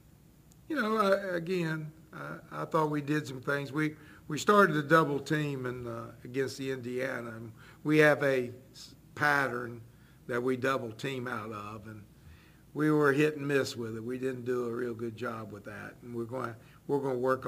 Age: 60-79